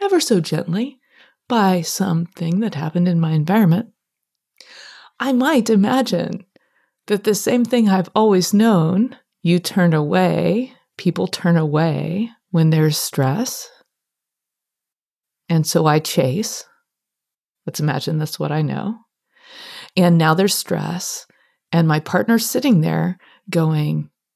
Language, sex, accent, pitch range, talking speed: English, female, American, 170-245 Hz, 120 wpm